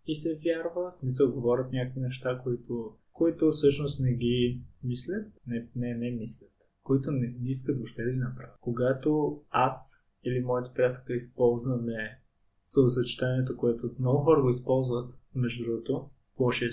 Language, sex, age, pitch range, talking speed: Bulgarian, male, 20-39, 120-130 Hz, 145 wpm